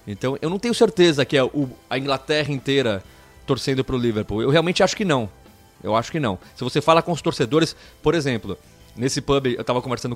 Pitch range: 115-175 Hz